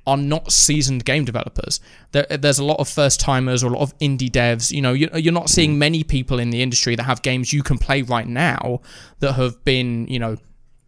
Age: 20-39